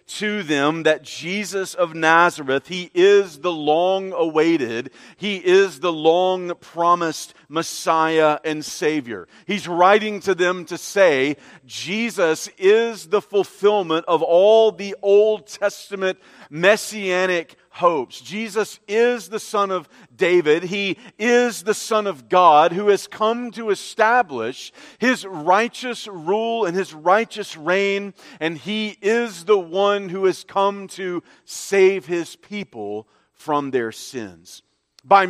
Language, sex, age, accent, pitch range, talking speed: English, male, 40-59, American, 175-225 Hz, 130 wpm